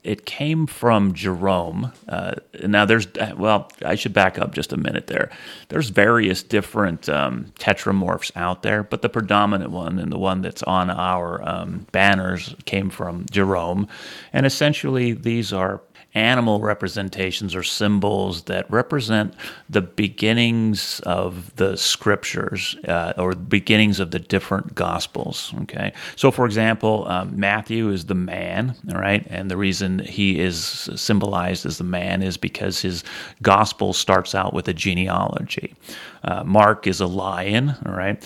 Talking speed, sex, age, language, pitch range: 150 wpm, male, 30-49, English, 95-110 Hz